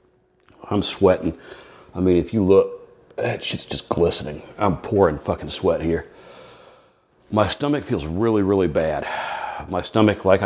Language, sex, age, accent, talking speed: English, male, 40-59, American, 145 wpm